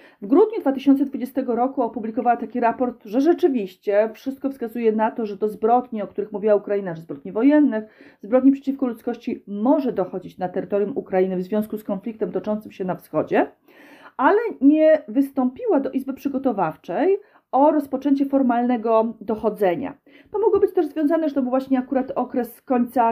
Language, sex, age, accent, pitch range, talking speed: Polish, female, 40-59, native, 210-260 Hz, 160 wpm